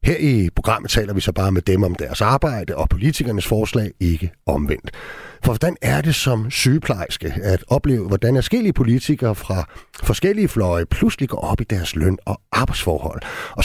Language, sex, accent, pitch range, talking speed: Danish, male, native, 95-140 Hz, 175 wpm